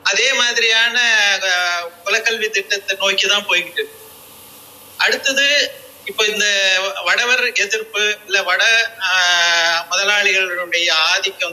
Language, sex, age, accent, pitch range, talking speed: Tamil, male, 30-49, native, 185-240 Hz, 80 wpm